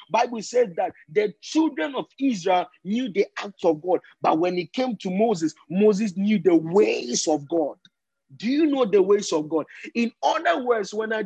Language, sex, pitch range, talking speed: English, male, 195-295 Hz, 190 wpm